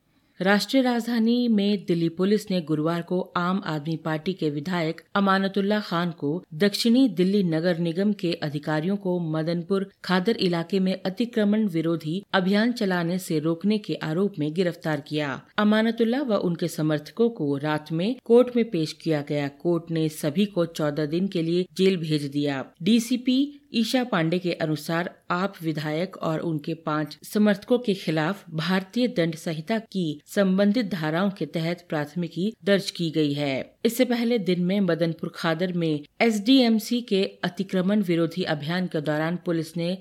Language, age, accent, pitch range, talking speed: Hindi, 40-59, native, 160-200 Hz, 155 wpm